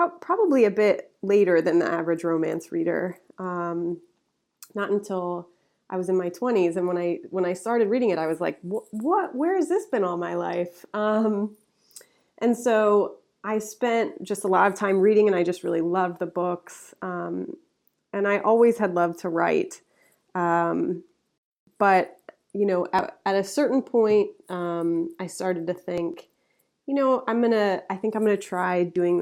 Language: English